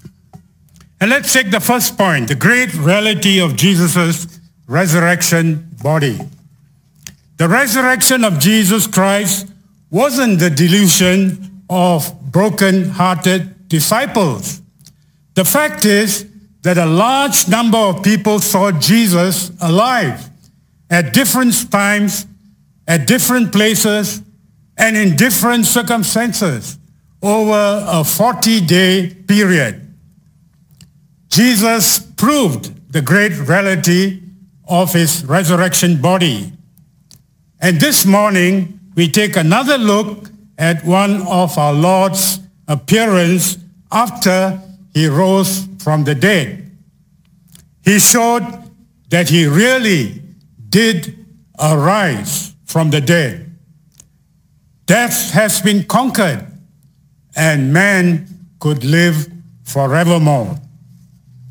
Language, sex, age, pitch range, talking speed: English, male, 60-79, 165-205 Hz, 95 wpm